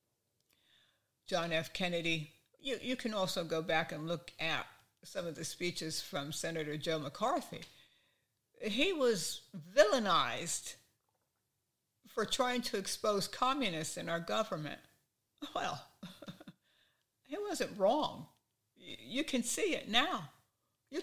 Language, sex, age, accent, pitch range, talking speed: English, female, 60-79, American, 130-210 Hz, 120 wpm